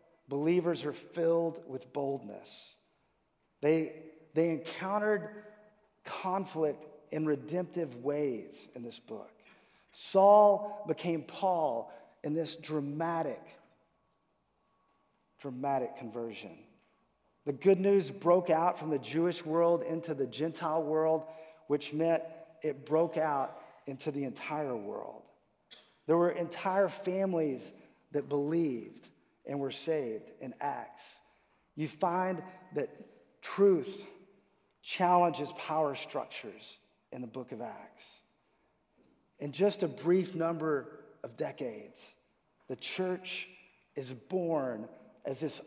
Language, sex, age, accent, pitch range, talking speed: English, male, 40-59, American, 145-180 Hz, 105 wpm